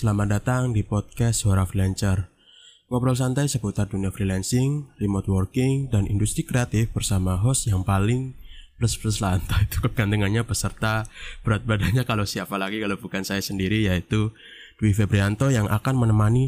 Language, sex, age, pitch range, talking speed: Indonesian, male, 20-39, 95-115 Hz, 150 wpm